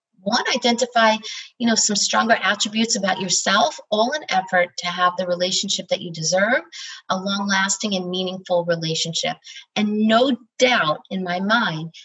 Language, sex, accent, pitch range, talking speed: English, female, American, 180-225 Hz, 150 wpm